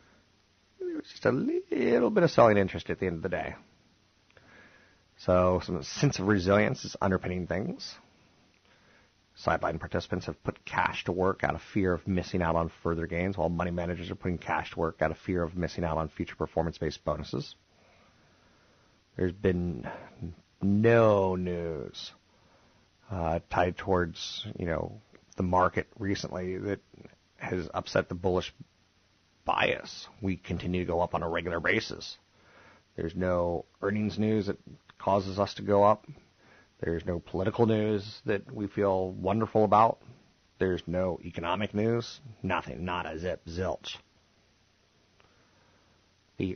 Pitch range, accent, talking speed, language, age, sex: 90-105 Hz, American, 145 wpm, English, 30-49, male